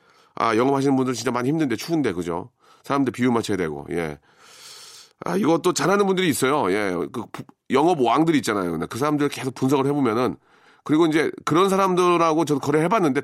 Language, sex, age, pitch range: Korean, male, 40-59, 135-185 Hz